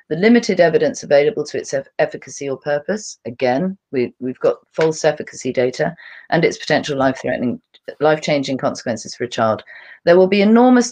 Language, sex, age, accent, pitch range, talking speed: English, female, 40-59, British, 135-195 Hz, 160 wpm